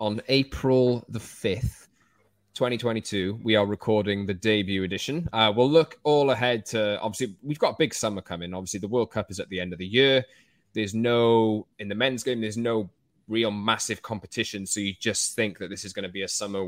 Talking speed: 210 wpm